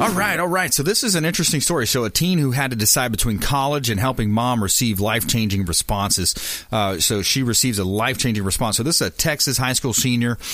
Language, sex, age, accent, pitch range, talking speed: English, male, 40-59, American, 105-130 Hz, 230 wpm